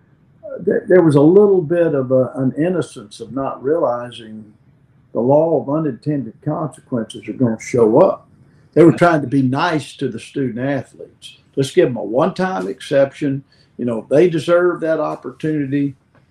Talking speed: 160 wpm